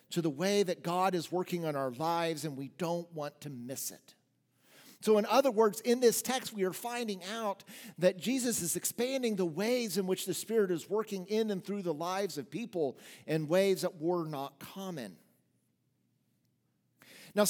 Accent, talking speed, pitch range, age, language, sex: American, 185 wpm, 150-205 Hz, 50-69, English, male